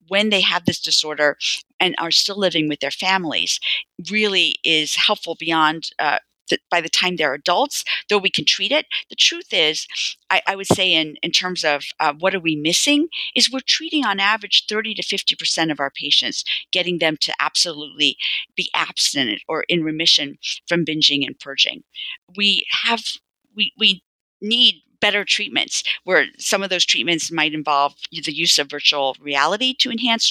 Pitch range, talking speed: 155-205 Hz, 175 wpm